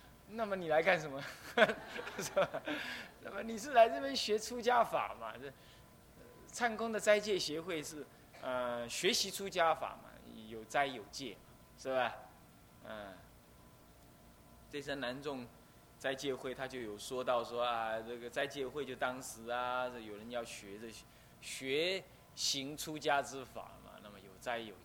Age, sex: 20-39, male